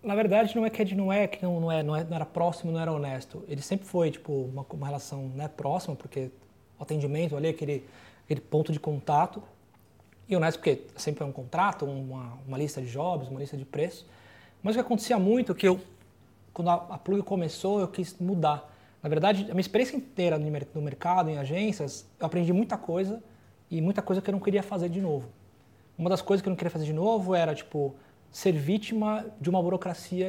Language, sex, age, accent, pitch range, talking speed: Portuguese, male, 20-39, Brazilian, 150-200 Hz, 215 wpm